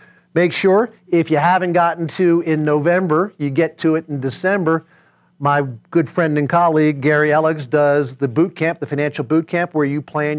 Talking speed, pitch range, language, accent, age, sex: 190 wpm, 130-170 Hz, English, American, 40-59, male